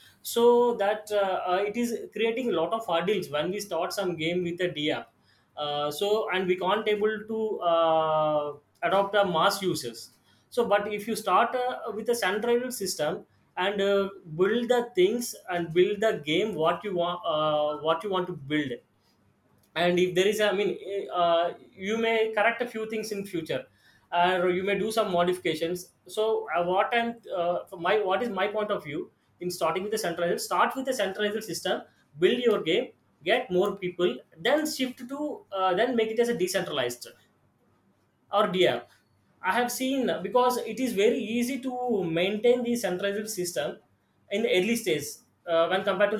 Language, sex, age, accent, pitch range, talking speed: English, male, 20-39, Indian, 170-220 Hz, 185 wpm